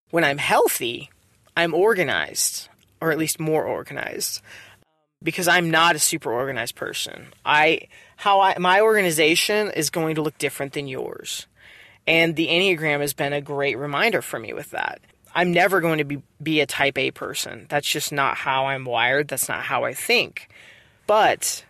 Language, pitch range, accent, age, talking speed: English, 145-175 Hz, American, 20-39, 175 wpm